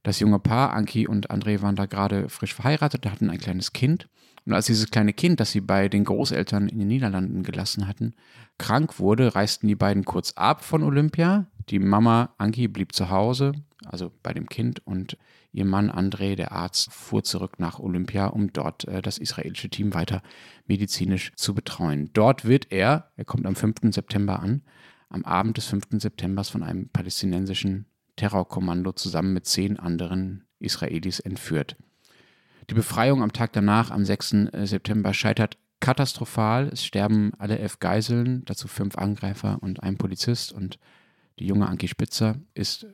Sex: male